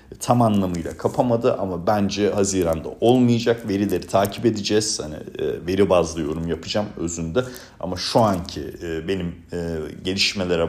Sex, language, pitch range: male, Turkish, 85-110 Hz